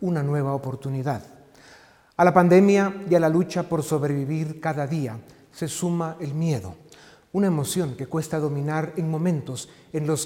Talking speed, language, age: 160 wpm, Spanish, 40-59